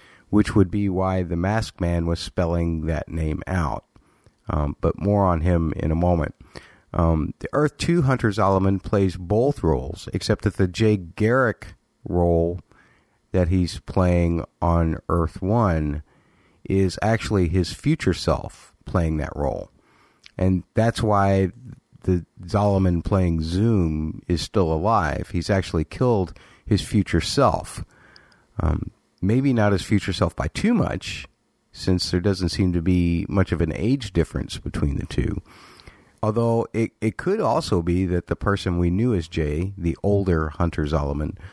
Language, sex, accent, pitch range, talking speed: English, male, American, 80-100 Hz, 150 wpm